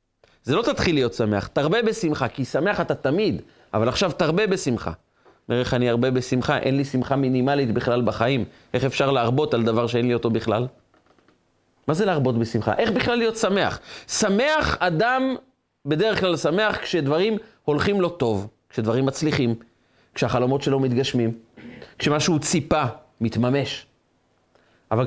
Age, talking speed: 30-49, 145 wpm